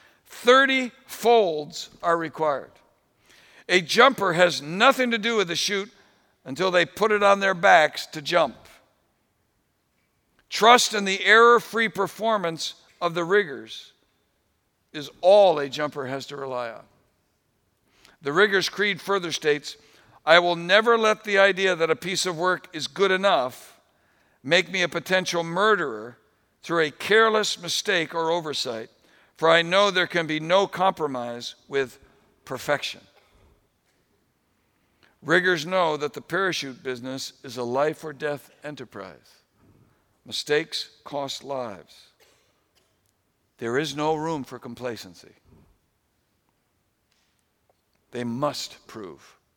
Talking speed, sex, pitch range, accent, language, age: 125 wpm, male, 135-195 Hz, American, English, 60-79